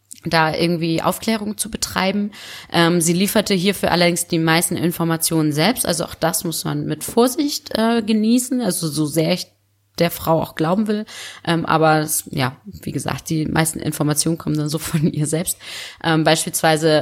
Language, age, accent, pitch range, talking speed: German, 20-39, German, 155-180 Hz, 170 wpm